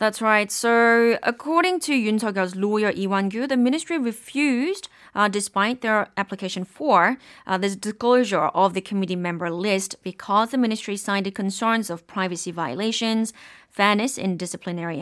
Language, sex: Korean, female